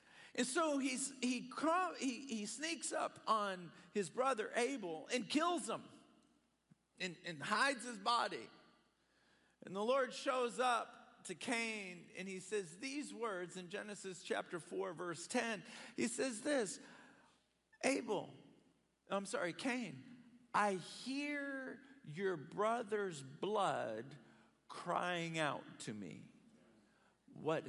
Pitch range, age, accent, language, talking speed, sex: 195-265 Hz, 50-69, American, English, 115 wpm, male